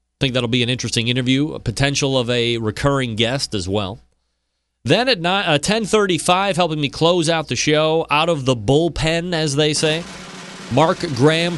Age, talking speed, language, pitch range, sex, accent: 40-59, 175 wpm, English, 105-140 Hz, male, American